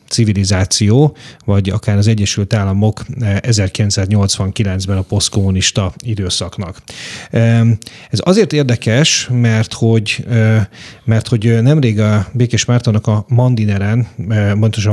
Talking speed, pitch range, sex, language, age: 95 wpm, 100-120 Hz, male, Hungarian, 30-49